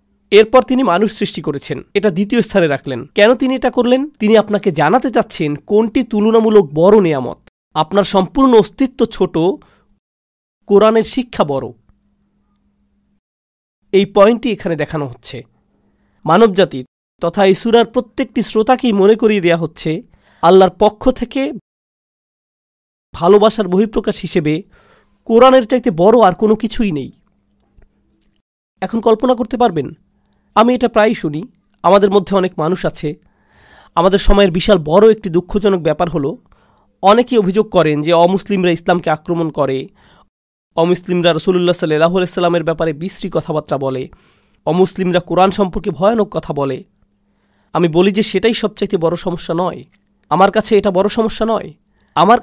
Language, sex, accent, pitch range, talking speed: Bengali, male, native, 165-220 Hz, 125 wpm